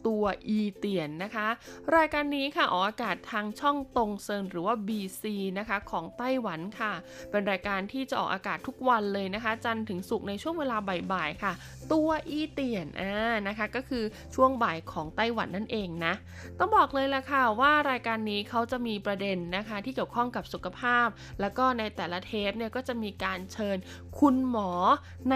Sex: female